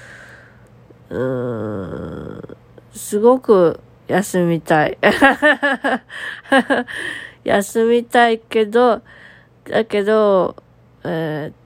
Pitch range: 170-210 Hz